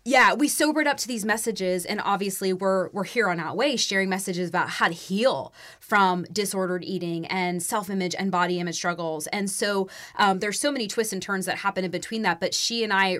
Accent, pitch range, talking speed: American, 185-220 Hz, 215 wpm